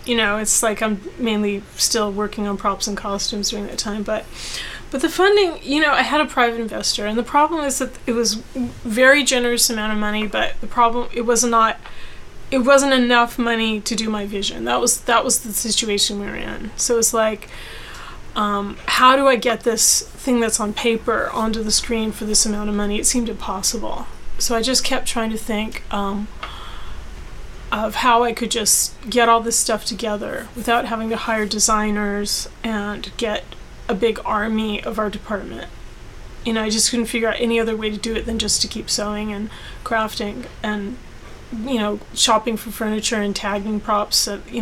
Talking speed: 200 wpm